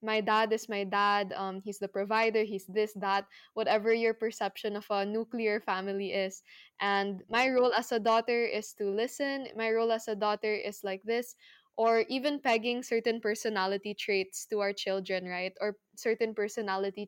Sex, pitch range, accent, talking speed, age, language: female, 205-230 Hz, Filipino, 175 wpm, 10-29, English